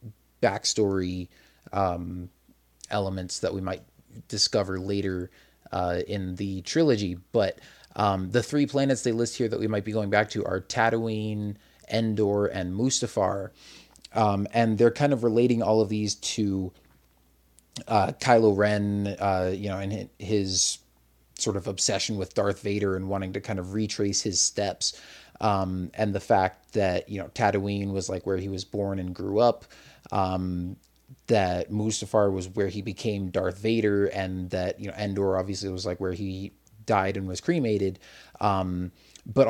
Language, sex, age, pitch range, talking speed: English, male, 30-49, 95-110 Hz, 160 wpm